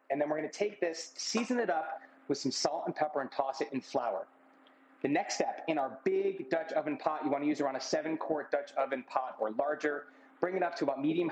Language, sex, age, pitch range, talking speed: English, male, 30-49, 140-200 Hz, 245 wpm